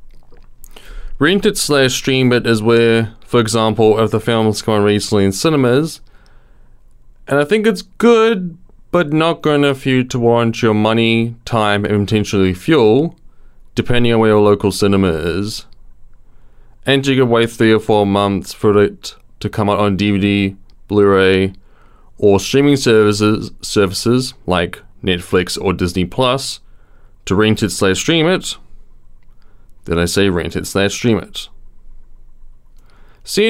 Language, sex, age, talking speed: English, male, 20-39, 150 wpm